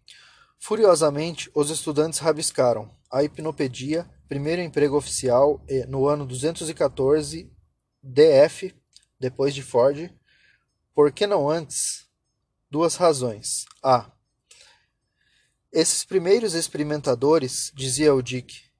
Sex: male